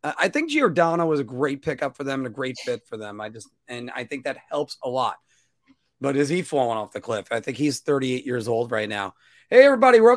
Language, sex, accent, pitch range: English, male, American, 130-180 Hz